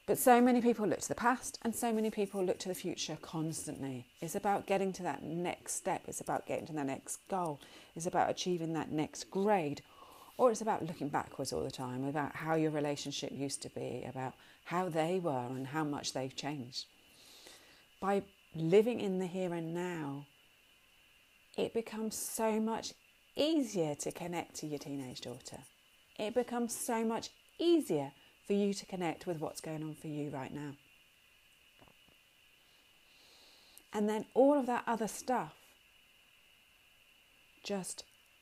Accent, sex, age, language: British, female, 30-49, English